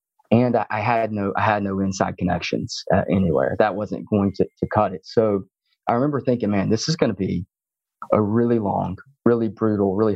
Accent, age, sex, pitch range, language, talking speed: American, 30-49, male, 95-115 Hz, English, 200 wpm